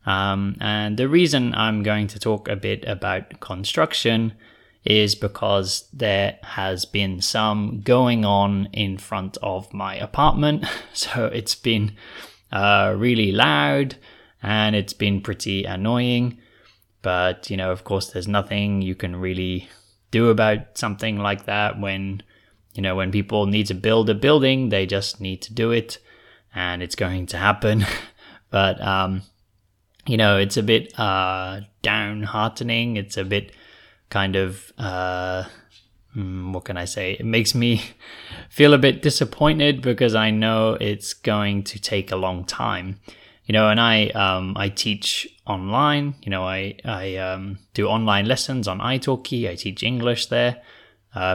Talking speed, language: 155 wpm, English